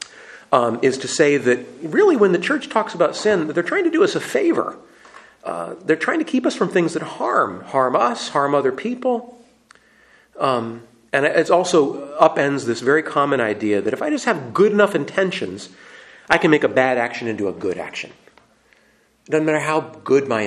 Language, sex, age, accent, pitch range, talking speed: English, male, 40-59, American, 115-180 Hz, 195 wpm